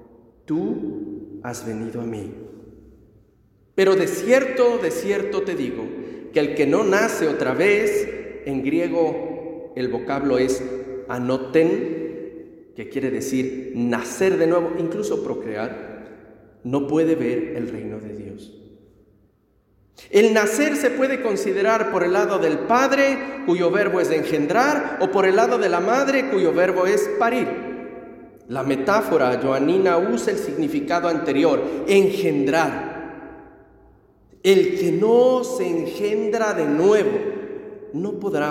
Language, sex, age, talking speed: German, male, 40-59, 130 wpm